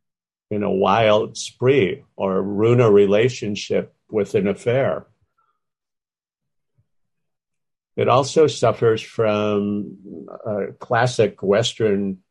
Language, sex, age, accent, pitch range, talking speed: English, male, 50-69, American, 100-125 Hz, 85 wpm